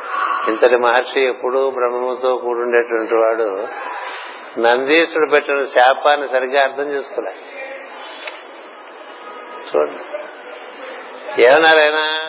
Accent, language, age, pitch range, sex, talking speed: native, Telugu, 60-79, 120-150 Hz, male, 75 wpm